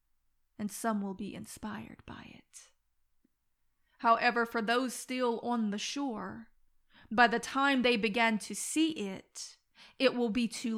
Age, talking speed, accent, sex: 30-49, 145 wpm, American, female